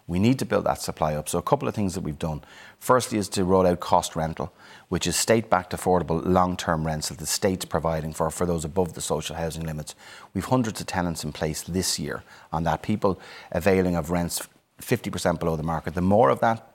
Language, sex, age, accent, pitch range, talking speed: English, male, 30-49, Irish, 85-105 Hz, 220 wpm